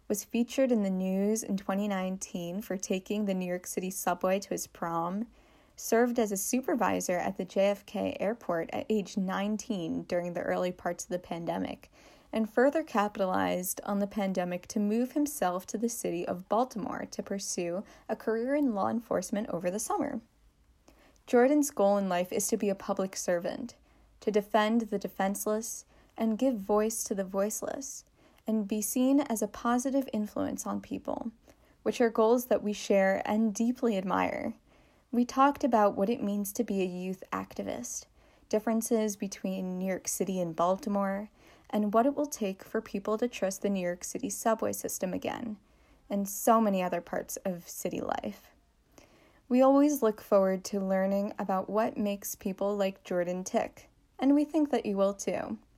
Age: 10-29